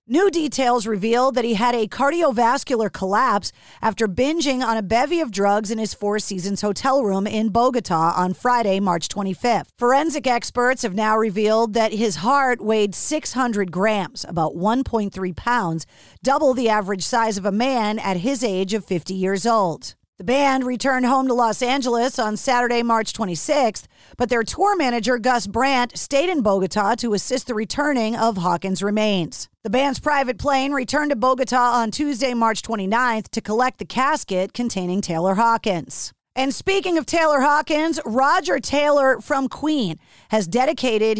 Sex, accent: female, American